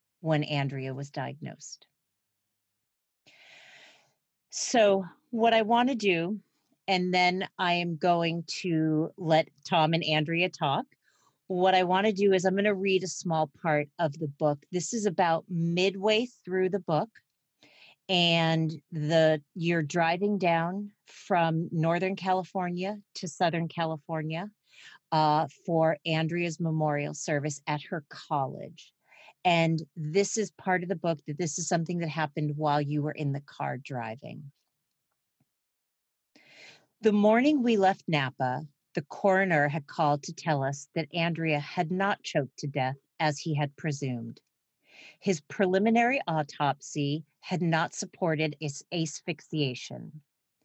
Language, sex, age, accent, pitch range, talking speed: English, female, 40-59, American, 150-185 Hz, 130 wpm